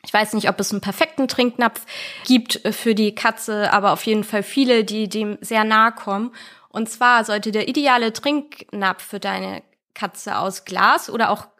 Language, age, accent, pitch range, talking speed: German, 20-39, German, 200-250 Hz, 180 wpm